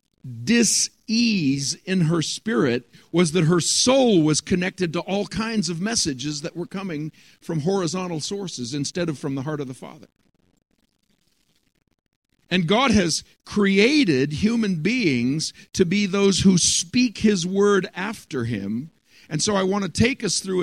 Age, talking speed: 50-69, 150 wpm